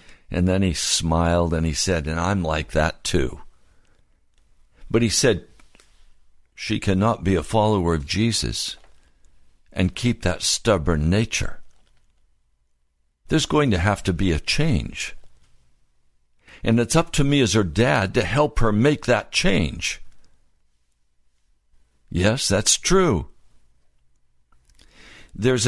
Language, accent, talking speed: English, American, 125 wpm